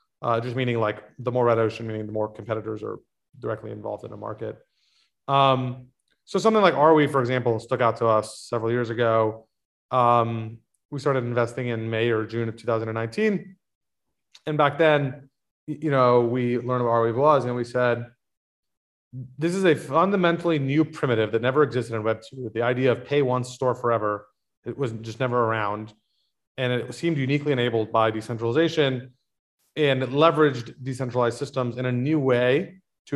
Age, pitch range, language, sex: 30-49, 115-135 Hz, English, male